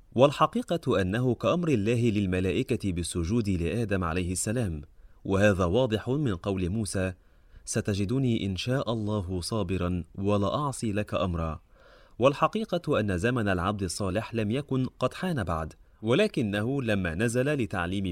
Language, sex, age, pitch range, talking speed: Arabic, male, 30-49, 95-130 Hz, 125 wpm